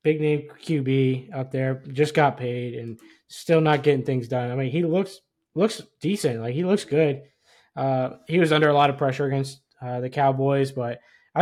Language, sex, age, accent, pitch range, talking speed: English, male, 20-39, American, 130-150 Hz, 200 wpm